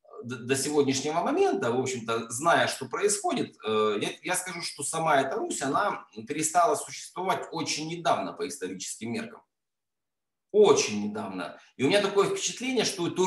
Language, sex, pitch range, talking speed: Russian, male, 135-225 Hz, 145 wpm